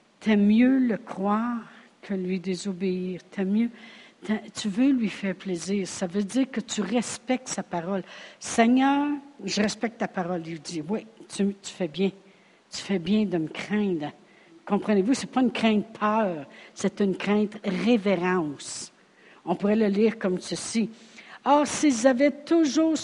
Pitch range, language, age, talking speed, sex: 190-245 Hz, French, 60-79, 155 wpm, female